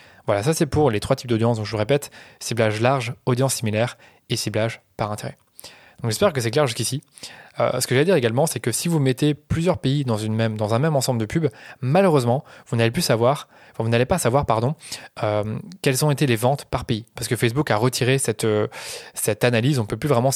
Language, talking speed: French, 240 wpm